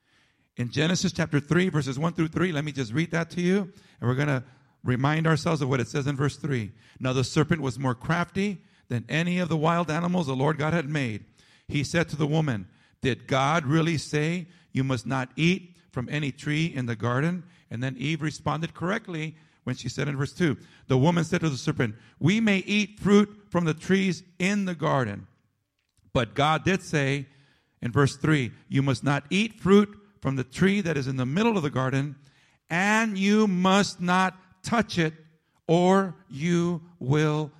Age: 50-69